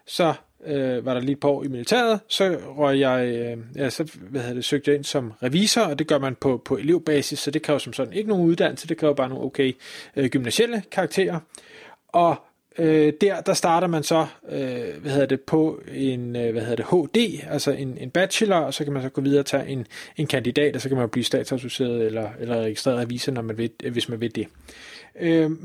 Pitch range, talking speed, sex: 135-185 Hz, 220 wpm, male